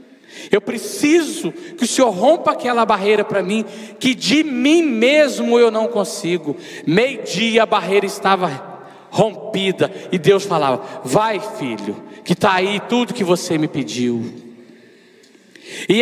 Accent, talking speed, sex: Brazilian, 140 wpm, male